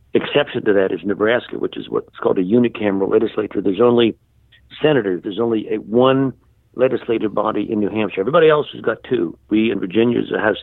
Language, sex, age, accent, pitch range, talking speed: English, male, 60-79, American, 115-155 Hz, 200 wpm